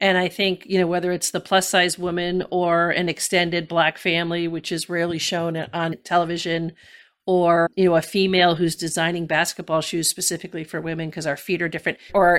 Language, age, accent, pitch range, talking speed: English, 50-69, American, 165-185 Hz, 195 wpm